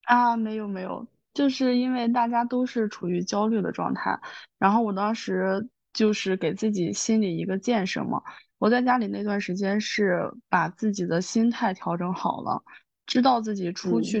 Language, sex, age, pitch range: Chinese, female, 20-39, 185-225 Hz